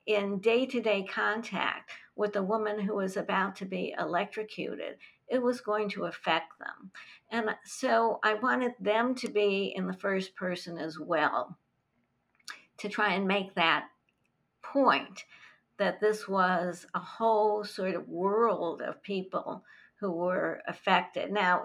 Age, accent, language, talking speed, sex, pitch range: 50-69, American, English, 140 wpm, female, 175-215 Hz